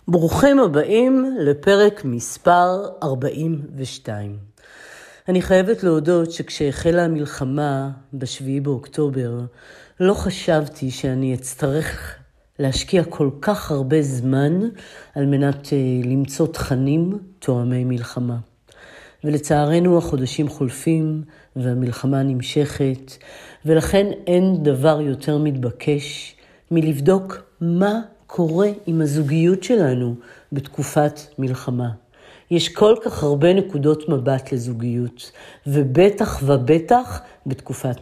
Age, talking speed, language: 50-69, 85 wpm, Hebrew